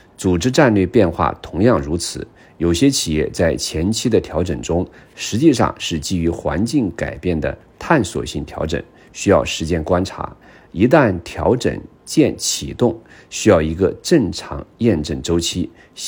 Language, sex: Chinese, male